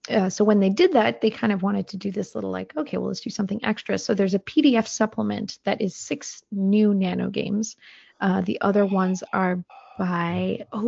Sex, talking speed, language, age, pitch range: female, 215 wpm, English, 30-49, 190-225 Hz